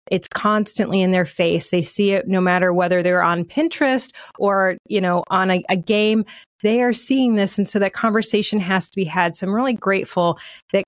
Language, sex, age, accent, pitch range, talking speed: English, female, 30-49, American, 185-235 Hz, 210 wpm